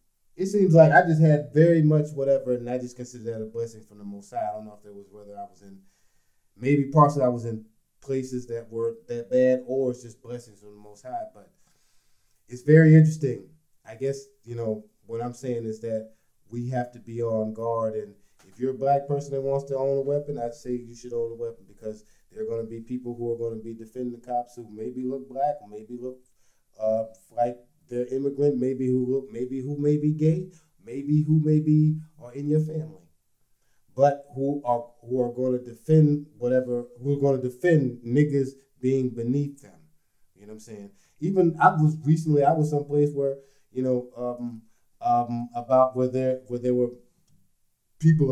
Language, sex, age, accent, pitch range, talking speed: English, male, 20-39, American, 115-145 Hz, 210 wpm